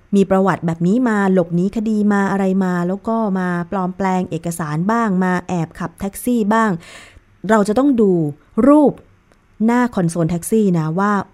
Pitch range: 165-215 Hz